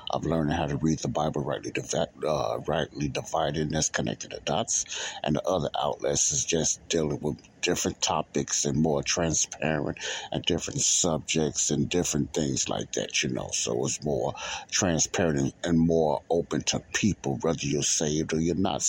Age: 60-79